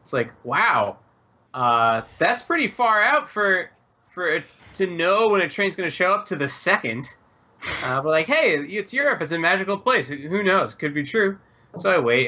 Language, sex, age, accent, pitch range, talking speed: English, male, 20-39, American, 125-185 Hz, 200 wpm